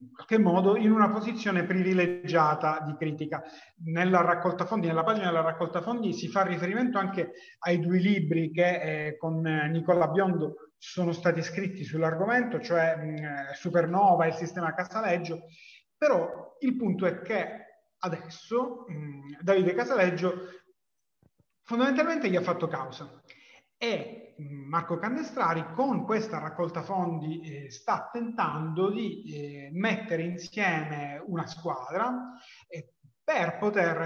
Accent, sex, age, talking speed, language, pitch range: native, male, 30-49, 120 wpm, Italian, 160-200 Hz